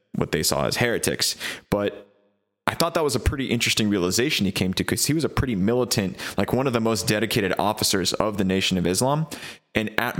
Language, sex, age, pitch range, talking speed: English, male, 20-39, 90-110 Hz, 220 wpm